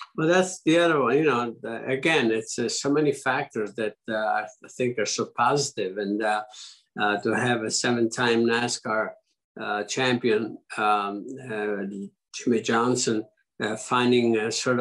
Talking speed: 160 wpm